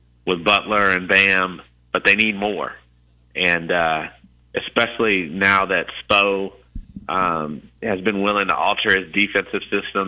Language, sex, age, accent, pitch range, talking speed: English, male, 30-49, American, 65-95 Hz, 135 wpm